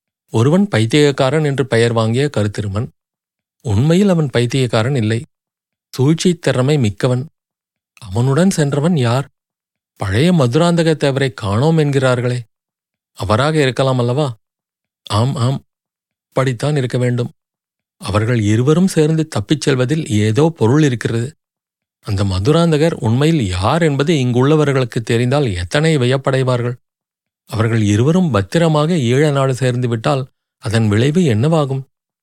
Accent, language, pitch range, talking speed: native, Tamil, 115-155 Hz, 100 wpm